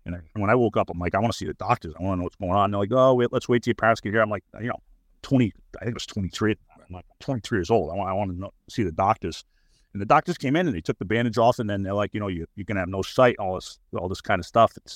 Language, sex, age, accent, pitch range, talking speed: English, male, 40-59, American, 90-110 Hz, 335 wpm